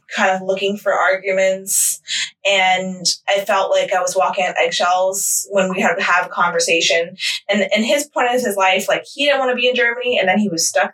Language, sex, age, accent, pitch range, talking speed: English, female, 20-39, American, 180-210 Hz, 225 wpm